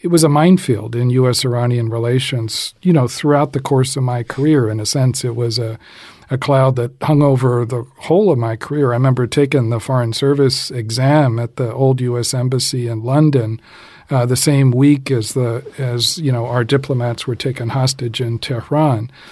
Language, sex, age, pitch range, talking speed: English, male, 50-69, 120-145 Hz, 200 wpm